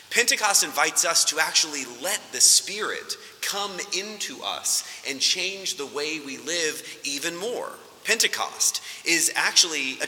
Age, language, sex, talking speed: 30-49, English, male, 135 wpm